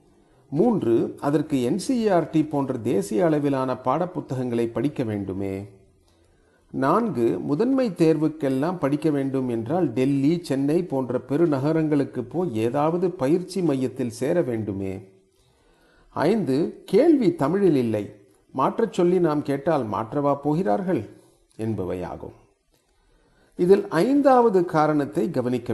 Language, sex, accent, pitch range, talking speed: Tamil, male, native, 120-165 Hz, 100 wpm